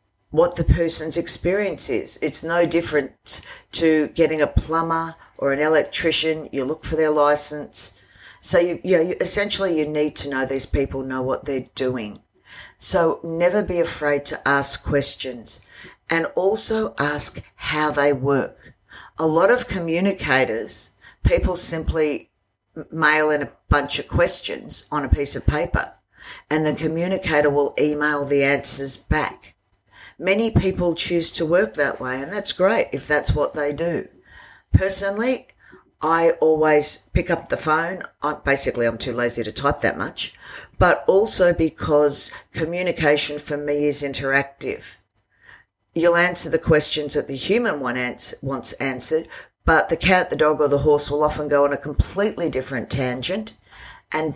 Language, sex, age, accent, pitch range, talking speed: English, female, 50-69, Australian, 140-165 Hz, 155 wpm